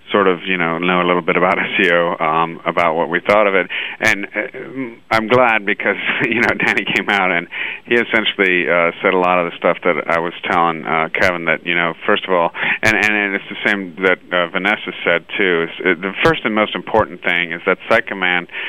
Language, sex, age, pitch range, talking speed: English, male, 40-59, 85-100 Hz, 225 wpm